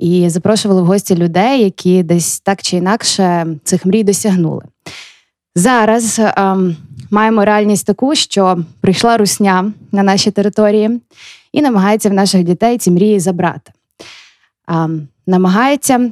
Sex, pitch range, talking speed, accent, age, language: female, 180-215 Hz, 125 wpm, native, 20-39, Ukrainian